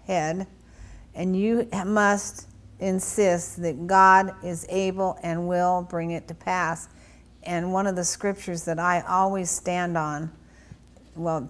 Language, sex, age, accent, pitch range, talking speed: English, female, 50-69, American, 160-185 Hz, 135 wpm